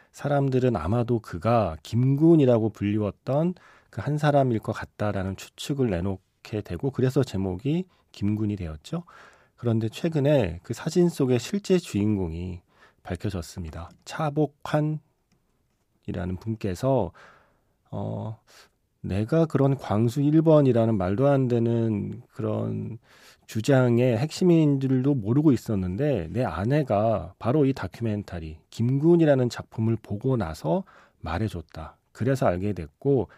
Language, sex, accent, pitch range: Korean, male, native, 100-135 Hz